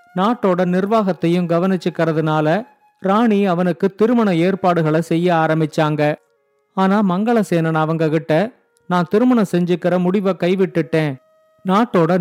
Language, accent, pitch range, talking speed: Tamil, native, 160-200 Hz, 95 wpm